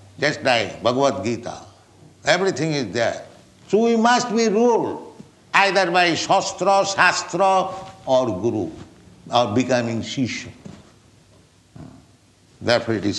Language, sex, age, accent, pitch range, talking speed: English, male, 60-79, Indian, 115-155 Hz, 110 wpm